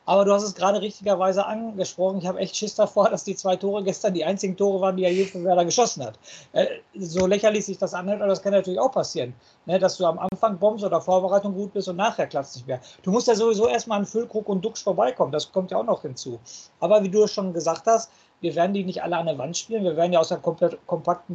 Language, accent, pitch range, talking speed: German, German, 175-210 Hz, 255 wpm